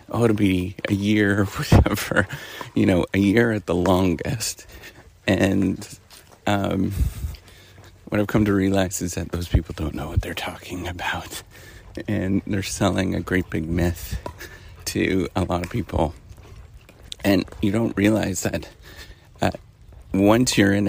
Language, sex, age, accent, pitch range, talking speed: English, male, 30-49, American, 90-105 Hz, 145 wpm